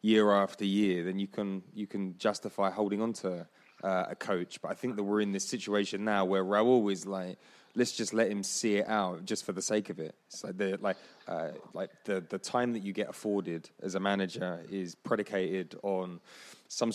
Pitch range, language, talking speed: 95-105 Hz, English, 210 wpm